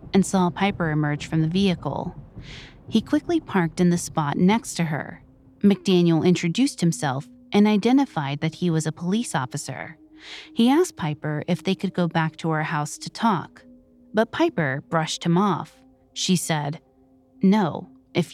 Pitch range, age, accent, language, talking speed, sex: 155-220 Hz, 30-49, American, English, 160 wpm, female